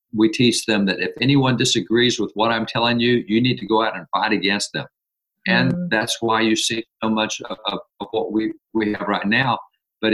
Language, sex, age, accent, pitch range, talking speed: English, male, 50-69, American, 105-120 Hz, 220 wpm